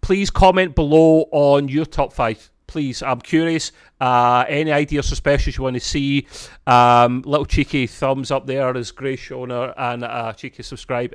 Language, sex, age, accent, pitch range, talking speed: English, male, 30-49, British, 115-135 Hz, 170 wpm